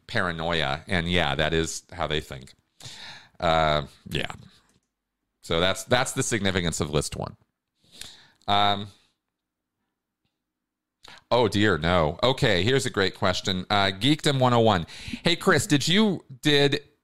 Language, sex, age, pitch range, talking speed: English, male, 40-59, 90-120 Hz, 125 wpm